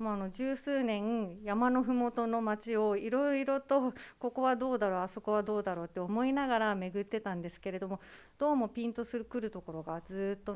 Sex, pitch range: female, 200-245 Hz